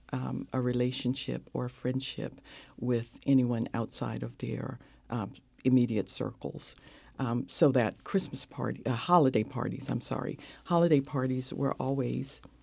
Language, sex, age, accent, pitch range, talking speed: English, female, 50-69, American, 125-145 Hz, 135 wpm